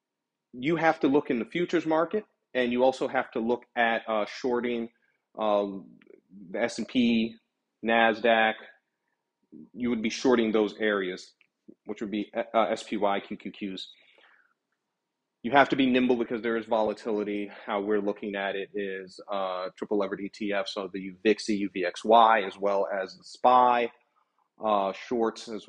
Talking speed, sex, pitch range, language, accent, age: 145 wpm, male, 100-115 Hz, English, American, 30-49